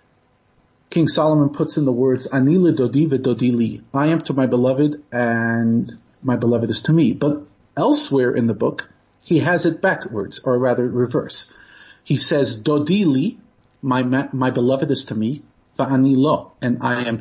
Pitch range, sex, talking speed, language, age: 130-160 Hz, male, 145 wpm, English, 40-59